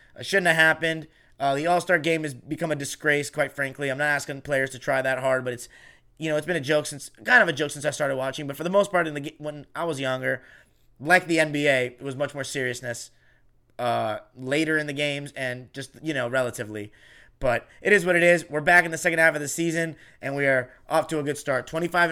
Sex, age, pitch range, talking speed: male, 30-49, 135-160 Hz, 245 wpm